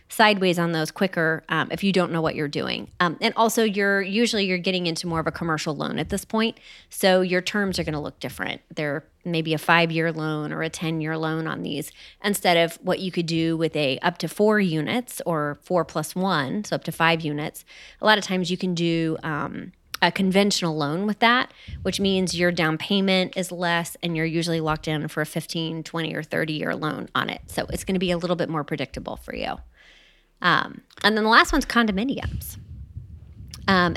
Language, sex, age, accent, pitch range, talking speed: English, female, 20-39, American, 160-195 Hz, 220 wpm